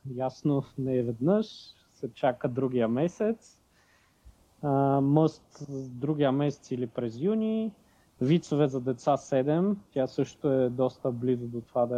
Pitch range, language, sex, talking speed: 130-160 Hz, Bulgarian, male, 135 wpm